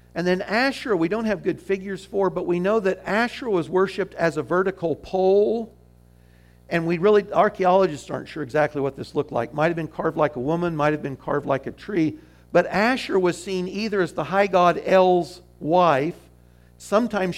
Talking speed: 195 wpm